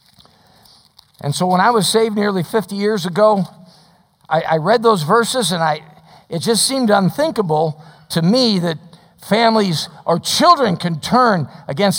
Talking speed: 150 wpm